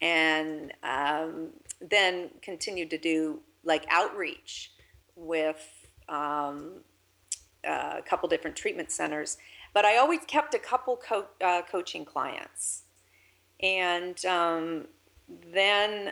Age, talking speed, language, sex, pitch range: 50-69, 105 wpm, English, female, 160-200 Hz